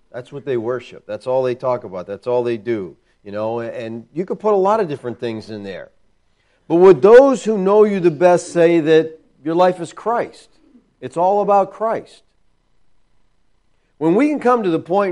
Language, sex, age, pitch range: English, male, 40-59, 135-180 Hz